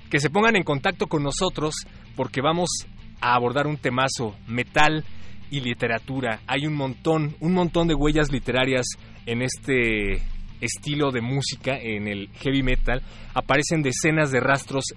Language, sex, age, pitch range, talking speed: Spanish, male, 30-49, 115-145 Hz, 150 wpm